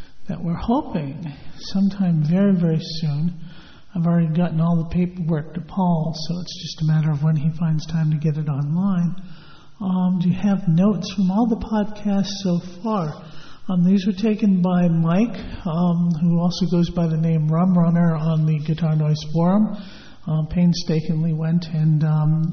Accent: American